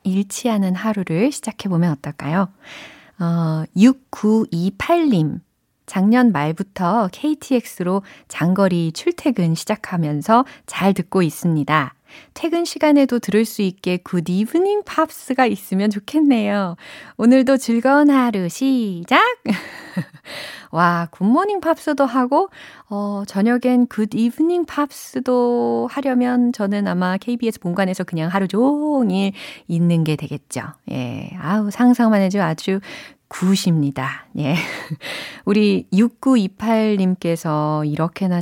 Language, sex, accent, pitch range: Korean, female, native, 170-245 Hz